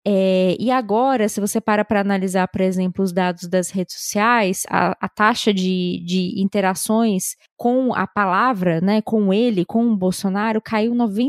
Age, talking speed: 20-39, 165 wpm